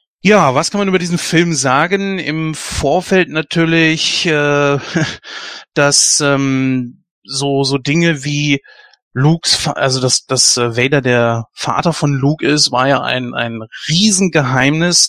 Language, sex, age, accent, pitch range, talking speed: German, male, 30-49, German, 130-160 Hz, 130 wpm